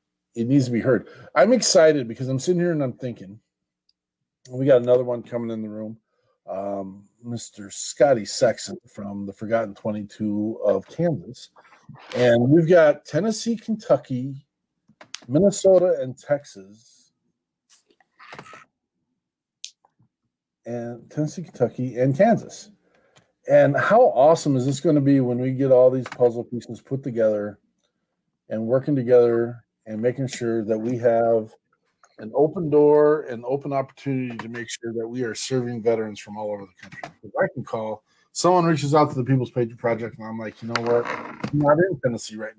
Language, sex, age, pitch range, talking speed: English, male, 40-59, 115-140 Hz, 160 wpm